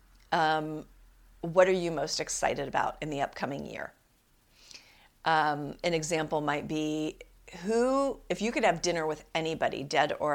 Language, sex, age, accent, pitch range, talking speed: English, female, 40-59, American, 165-245 Hz, 150 wpm